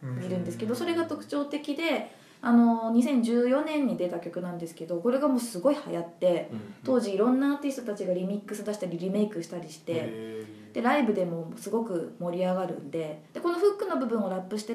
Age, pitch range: 20-39, 180-260 Hz